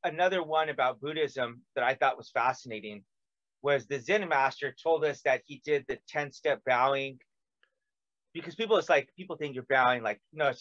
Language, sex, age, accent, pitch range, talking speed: English, male, 30-49, American, 135-190 Hz, 185 wpm